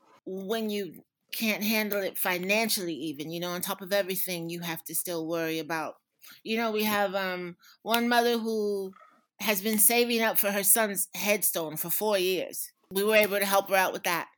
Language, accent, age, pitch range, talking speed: English, American, 30-49, 170-215 Hz, 195 wpm